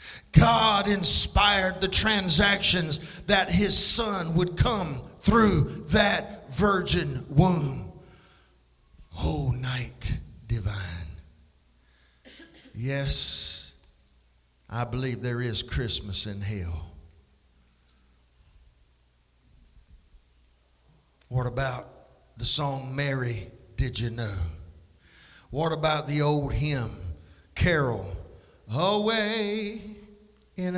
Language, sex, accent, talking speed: English, male, American, 80 wpm